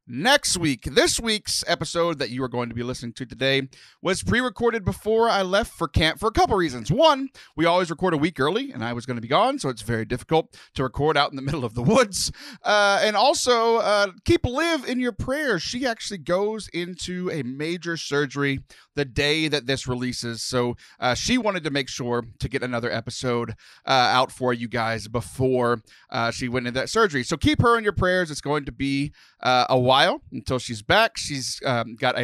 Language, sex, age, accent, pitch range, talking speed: English, male, 30-49, American, 125-190 Hz, 215 wpm